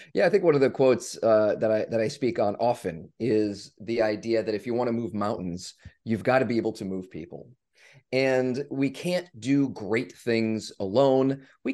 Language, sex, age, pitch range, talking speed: English, male, 30-49, 110-150 Hz, 210 wpm